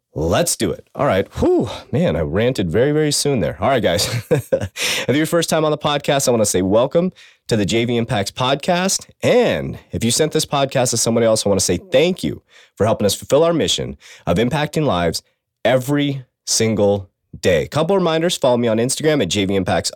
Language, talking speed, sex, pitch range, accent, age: English, 215 wpm, male, 100-150 Hz, American, 30-49